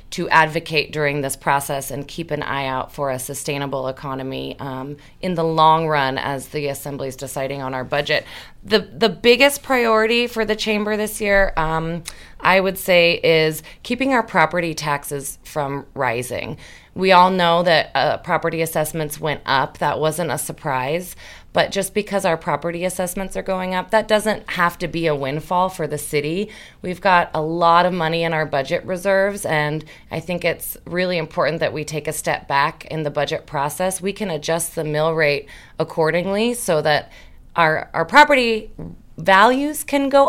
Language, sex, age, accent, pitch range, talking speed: English, female, 30-49, American, 150-190 Hz, 180 wpm